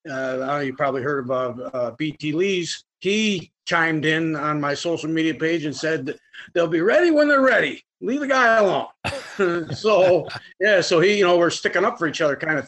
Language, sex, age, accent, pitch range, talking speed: English, male, 40-59, American, 135-170 Hz, 200 wpm